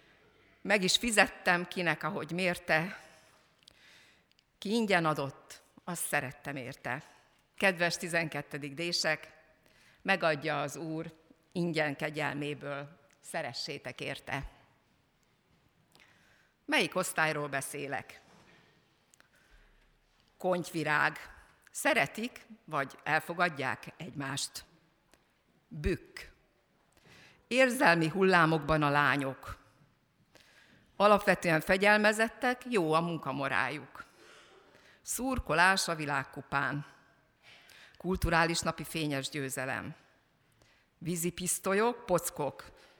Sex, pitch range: female, 145-185 Hz